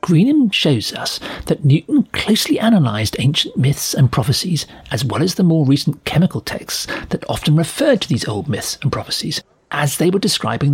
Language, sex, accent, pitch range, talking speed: English, male, British, 130-170 Hz, 180 wpm